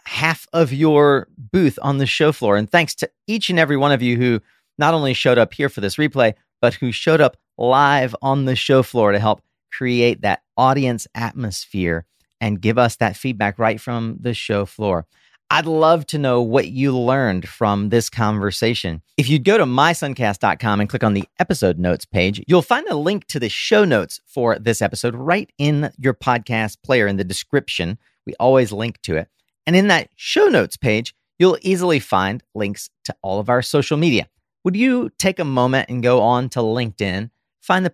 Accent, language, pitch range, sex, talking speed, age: American, English, 105-150 Hz, male, 200 wpm, 40-59